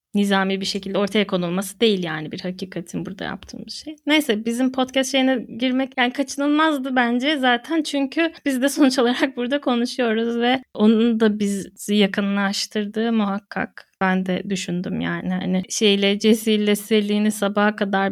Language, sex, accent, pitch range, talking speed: Turkish, female, native, 200-245 Hz, 145 wpm